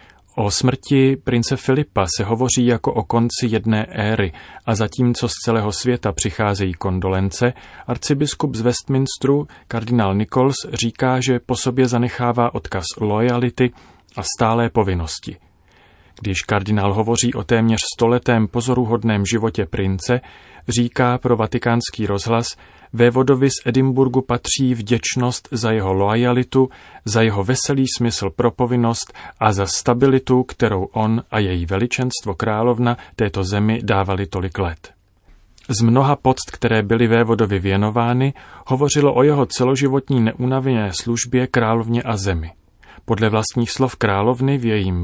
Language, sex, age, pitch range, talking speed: Czech, male, 30-49, 105-125 Hz, 130 wpm